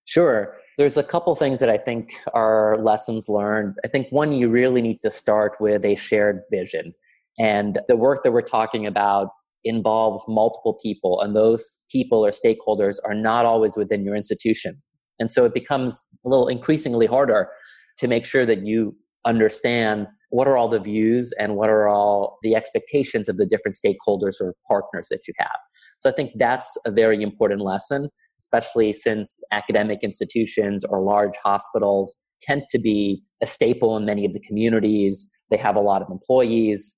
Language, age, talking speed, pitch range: English, 30-49, 175 wpm, 105-120 Hz